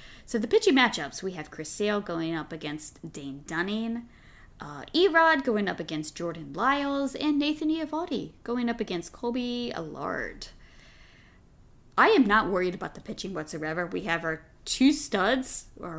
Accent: American